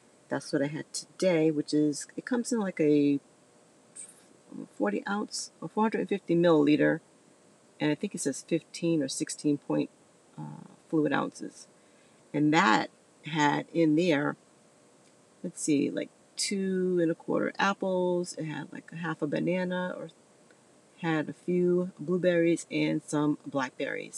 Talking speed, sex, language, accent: 140 wpm, female, English, American